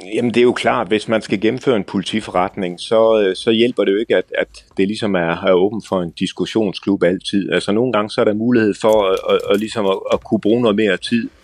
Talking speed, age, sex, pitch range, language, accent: 240 wpm, 30-49, male, 95-115 Hz, Danish, native